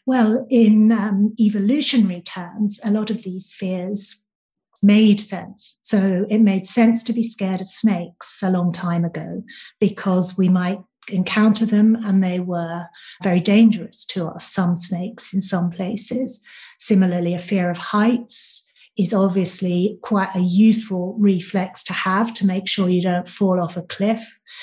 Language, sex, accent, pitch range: English, female, British, 185-220 Hz